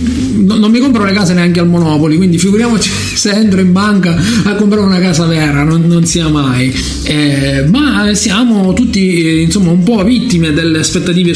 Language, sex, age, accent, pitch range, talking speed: Italian, male, 50-69, native, 160-215 Hz, 175 wpm